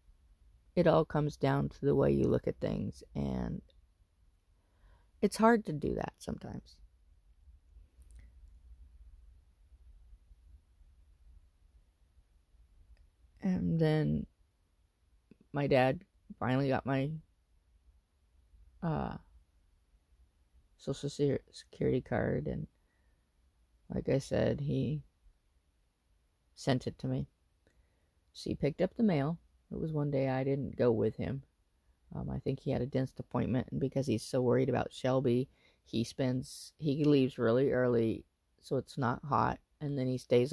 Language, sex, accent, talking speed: English, female, American, 120 wpm